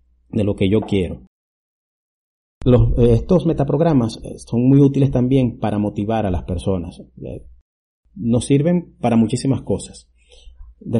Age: 40-59